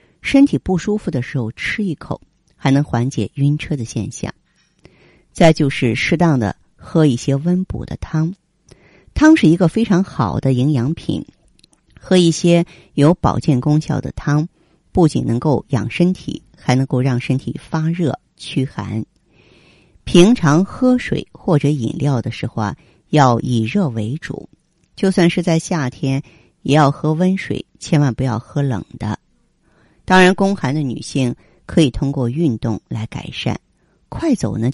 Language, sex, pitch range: Chinese, female, 120-170 Hz